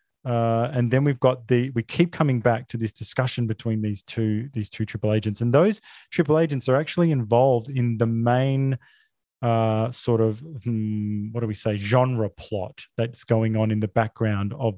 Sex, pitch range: male, 110-140 Hz